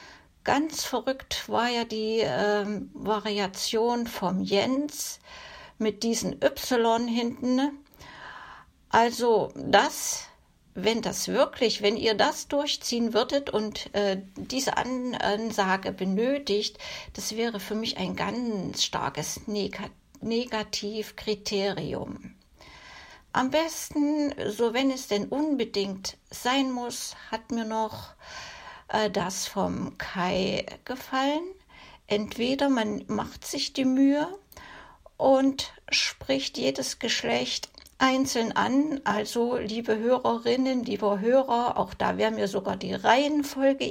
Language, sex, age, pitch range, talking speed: German, female, 60-79, 210-270 Hz, 105 wpm